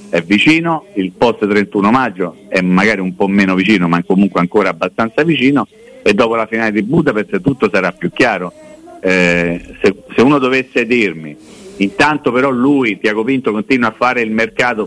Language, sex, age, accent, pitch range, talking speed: Italian, male, 50-69, native, 95-135 Hz, 175 wpm